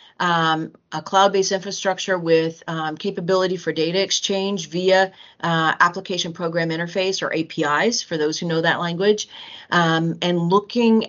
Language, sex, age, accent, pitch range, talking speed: English, female, 40-59, American, 165-200 Hz, 140 wpm